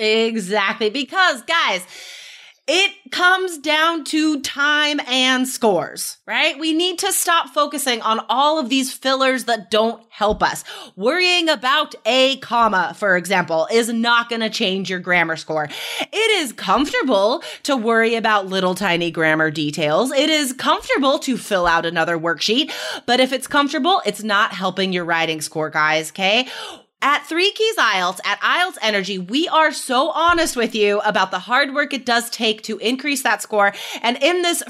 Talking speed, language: 165 wpm, English